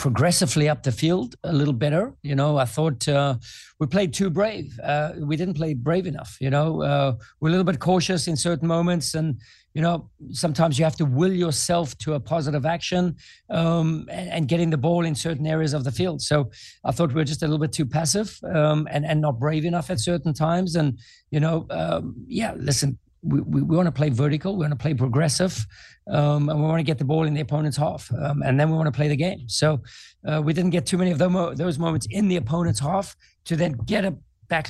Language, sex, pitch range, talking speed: English, male, 140-165 Hz, 235 wpm